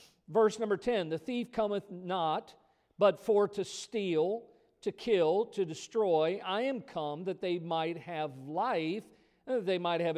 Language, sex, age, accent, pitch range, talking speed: English, male, 50-69, American, 175-225 Hz, 165 wpm